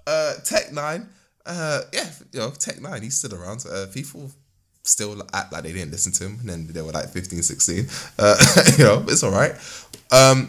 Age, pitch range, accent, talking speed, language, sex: 20-39, 95-140 Hz, British, 205 wpm, English, male